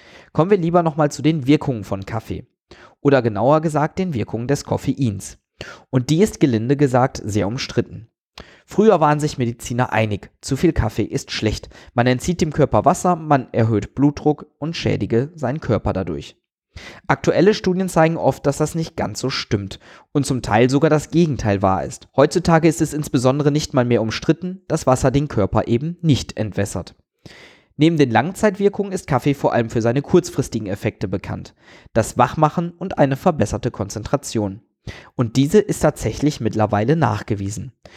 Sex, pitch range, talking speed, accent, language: male, 110-160 Hz, 165 wpm, German, German